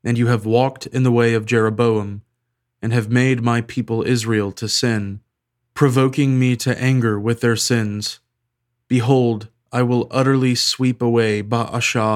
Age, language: 20-39, English